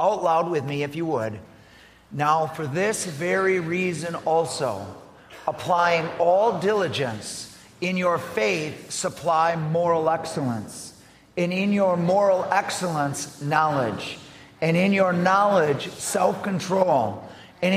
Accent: American